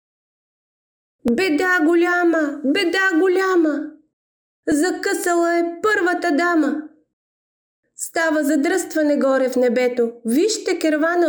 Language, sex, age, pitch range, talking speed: Bulgarian, female, 30-49, 255-350 Hz, 80 wpm